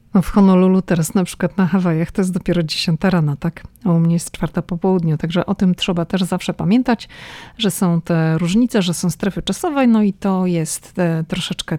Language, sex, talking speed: Polish, female, 200 wpm